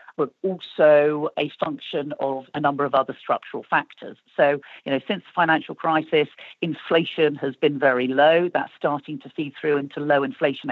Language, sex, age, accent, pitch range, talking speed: English, female, 50-69, British, 145-170 Hz, 175 wpm